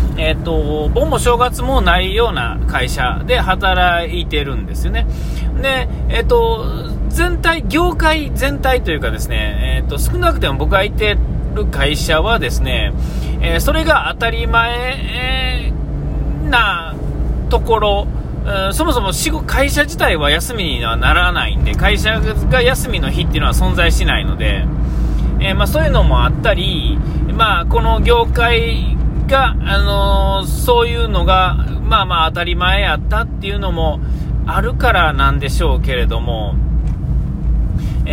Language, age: Japanese, 40-59